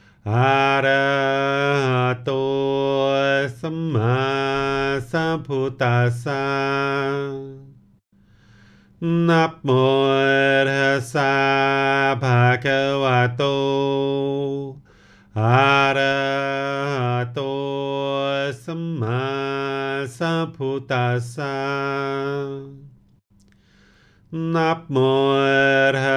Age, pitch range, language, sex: 40-59, 135-140 Hz, English, male